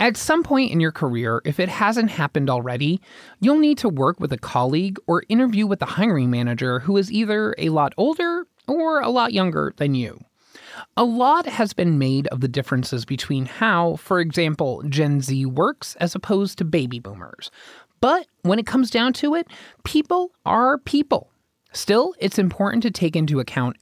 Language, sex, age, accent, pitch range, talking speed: English, male, 20-39, American, 135-220 Hz, 185 wpm